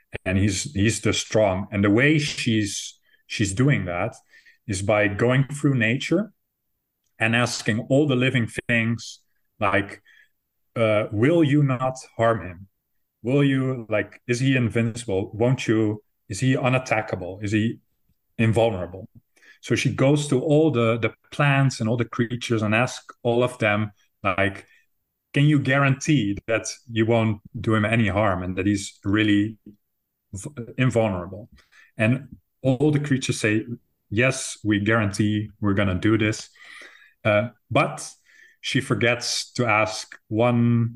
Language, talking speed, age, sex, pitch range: English, 140 wpm, 30-49, male, 105-125 Hz